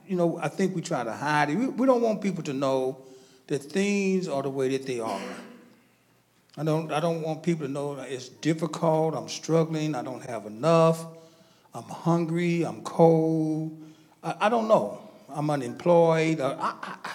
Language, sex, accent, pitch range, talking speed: English, male, American, 150-180 Hz, 180 wpm